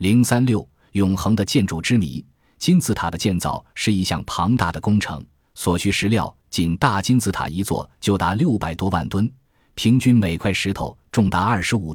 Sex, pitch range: male, 85-115 Hz